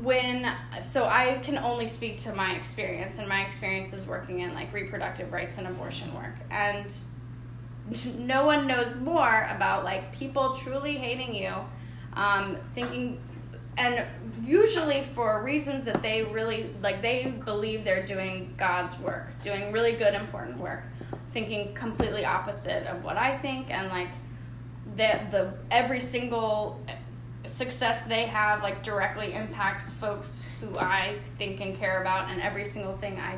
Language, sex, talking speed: English, female, 150 wpm